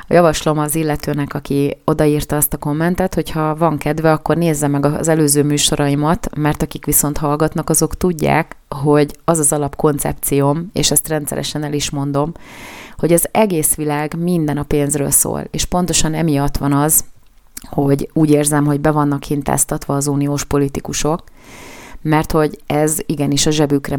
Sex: female